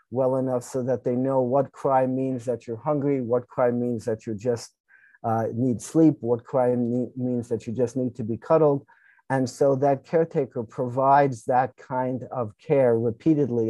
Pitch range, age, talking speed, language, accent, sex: 120-135 Hz, 50-69, 180 wpm, English, American, male